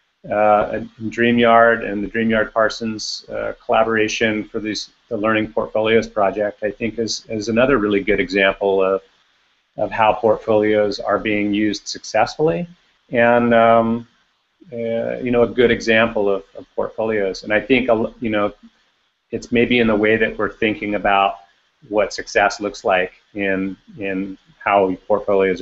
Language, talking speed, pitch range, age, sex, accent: English, 150 wpm, 100-115 Hz, 40-59, male, American